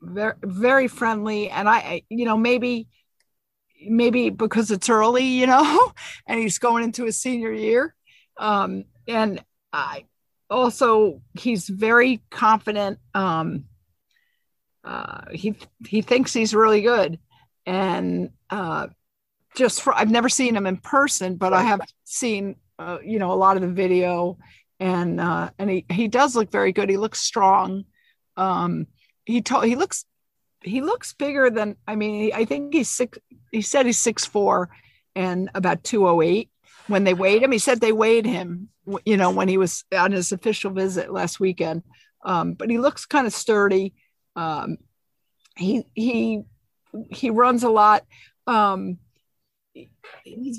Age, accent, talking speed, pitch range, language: 50-69, American, 155 wpm, 190-240 Hz, English